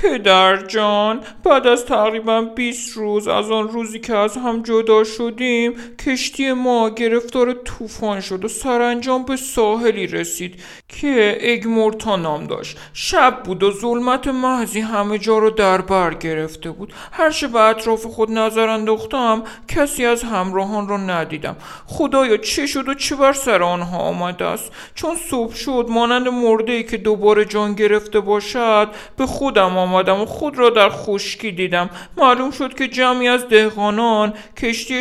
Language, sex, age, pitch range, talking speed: Persian, male, 50-69, 205-240 Hz, 150 wpm